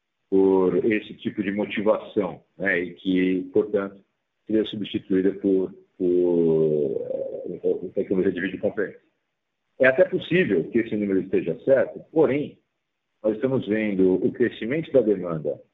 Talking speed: 120 wpm